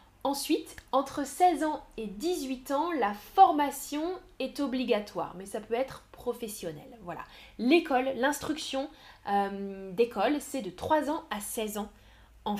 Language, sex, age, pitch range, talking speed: French, female, 10-29, 220-305 Hz, 140 wpm